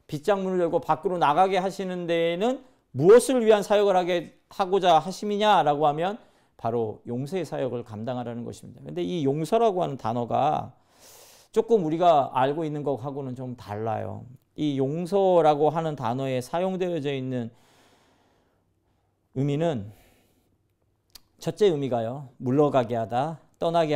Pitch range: 115-170 Hz